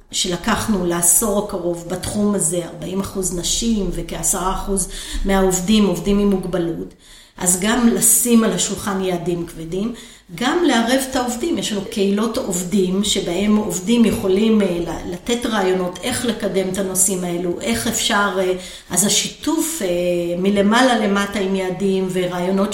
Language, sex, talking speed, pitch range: Hebrew, female, 120 wpm, 185-220 Hz